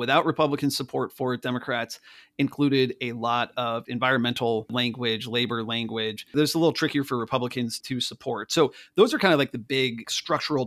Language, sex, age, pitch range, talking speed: English, male, 30-49, 120-140 Hz, 170 wpm